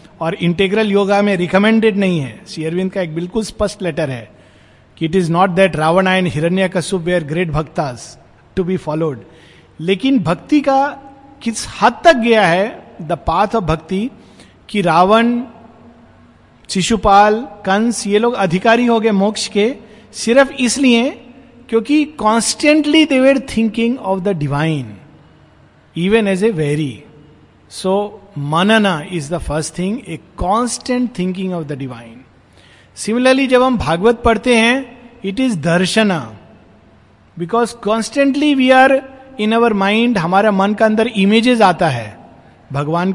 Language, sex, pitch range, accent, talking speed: Hindi, male, 160-230 Hz, native, 145 wpm